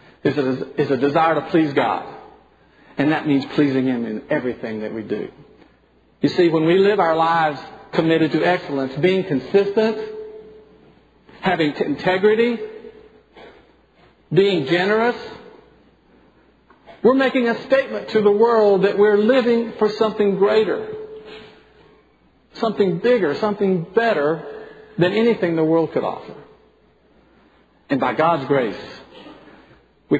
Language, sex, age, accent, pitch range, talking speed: English, male, 50-69, American, 130-210 Hz, 120 wpm